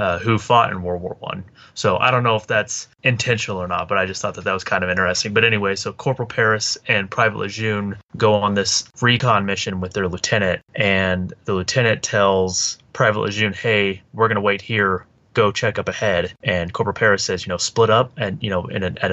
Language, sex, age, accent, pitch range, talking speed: English, male, 20-39, American, 95-115 Hz, 225 wpm